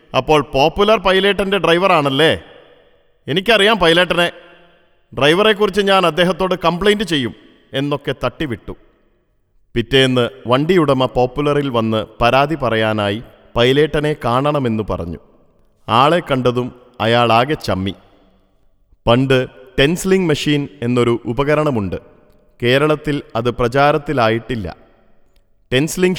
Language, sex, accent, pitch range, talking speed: Malayalam, male, native, 115-160 Hz, 80 wpm